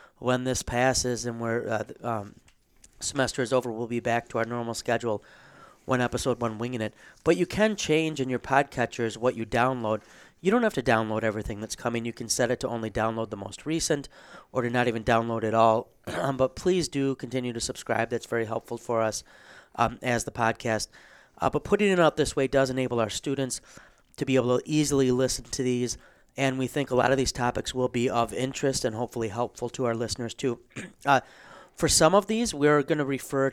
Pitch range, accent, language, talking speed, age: 115-135 Hz, American, English, 215 wpm, 30-49